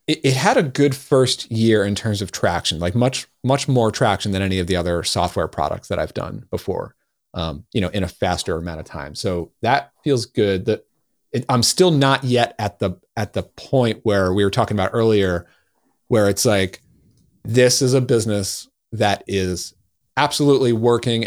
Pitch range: 90-120 Hz